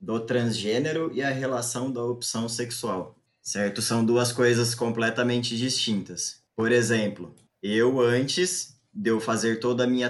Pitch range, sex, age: 120-150 Hz, male, 20-39